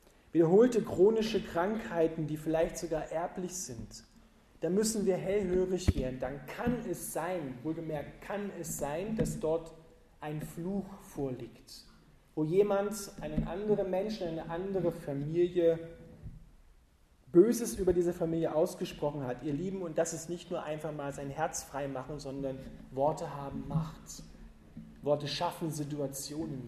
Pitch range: 150-200 Hz